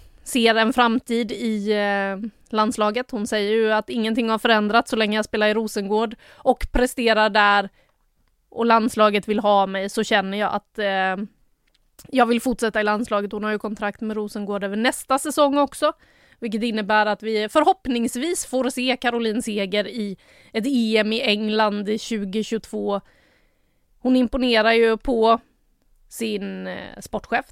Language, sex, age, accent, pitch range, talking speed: Swedish, female, 20-39, native, 210-245 Hz, 145 wpm